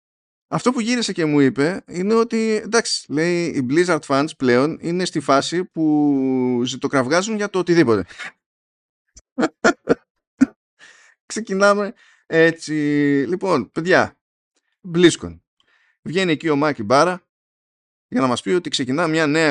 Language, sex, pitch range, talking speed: Greek, male, 130-180 Hz, 125 wpm